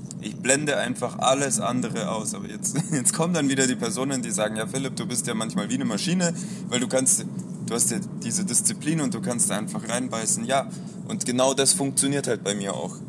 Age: 20-39